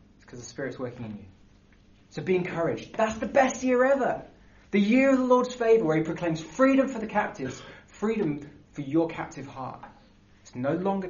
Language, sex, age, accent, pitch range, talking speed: English, male, 20-39, British, 100-165 Hz, 190 wpm